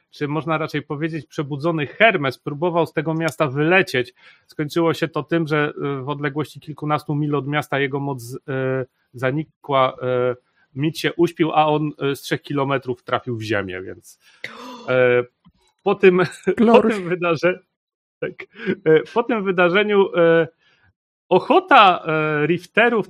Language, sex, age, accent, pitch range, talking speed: Polish, male, 40-59, native, 125-165 Hz, 140 wpm